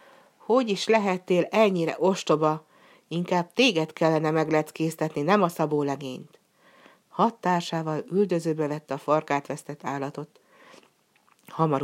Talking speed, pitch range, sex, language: 105 wpm, 145-185 Hz, female, Hungarian